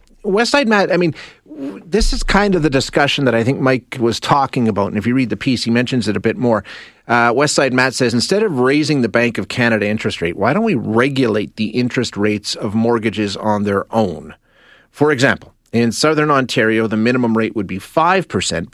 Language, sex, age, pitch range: English, male, 40-59, 105-145 Hz